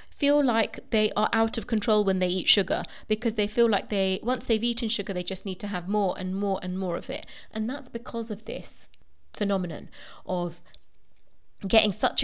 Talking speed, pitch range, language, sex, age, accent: 200 wpm, 200-255 Hz, English, female, 20-39, British